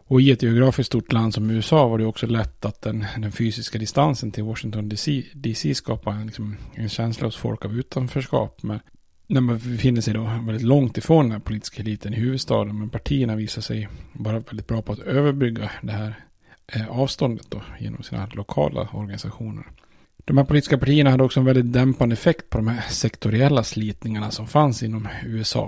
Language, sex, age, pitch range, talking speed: Swedish, male, 30-49, 105-125 Hz, 185 wpm